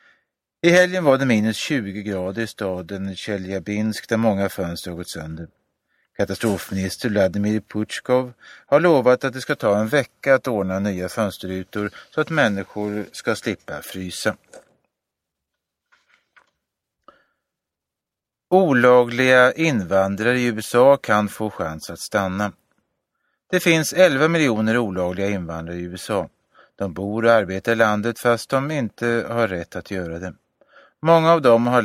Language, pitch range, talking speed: Swedish, 95-125 Hz, 135 wpm